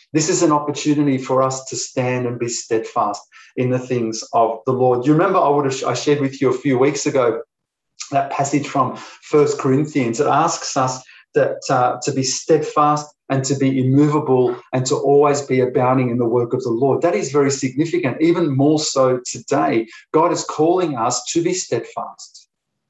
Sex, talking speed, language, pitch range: male, 195 wpm, English, 130-155 Hz